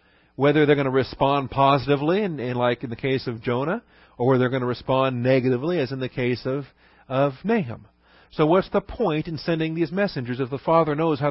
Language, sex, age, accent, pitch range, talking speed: English, male, 40-59, American, 120-155 Hz, 200 wpm